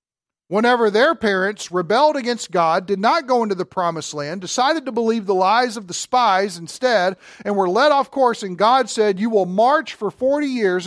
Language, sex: English, male